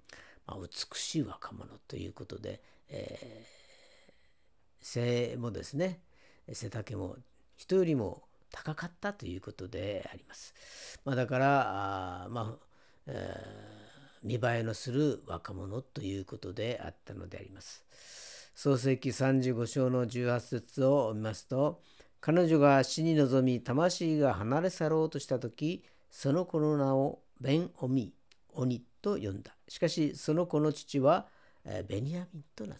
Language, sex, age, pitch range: Japanese, female, 50-69, 105-140 Hz